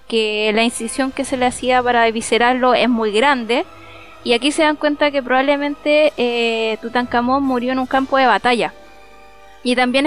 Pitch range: 235-295 Hz